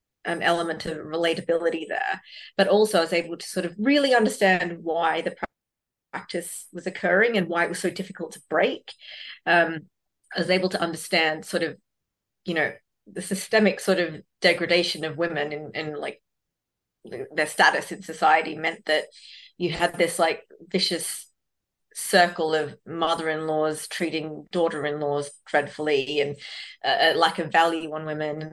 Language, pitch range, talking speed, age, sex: English, 155-185 Hz, 160 wpm, 30-49, female